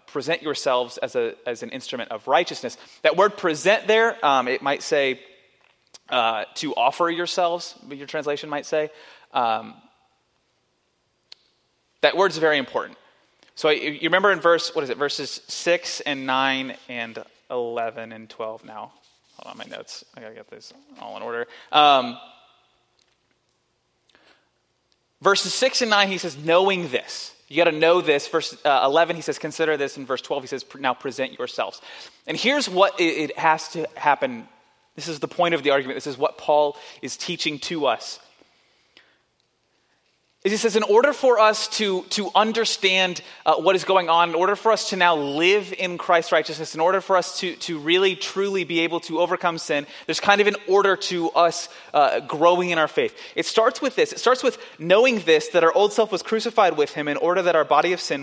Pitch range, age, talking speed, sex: 150-200 Hz, 30-49, 190 wpm, male